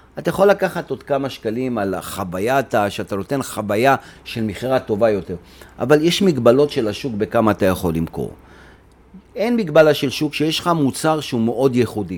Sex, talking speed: male, 165 wpm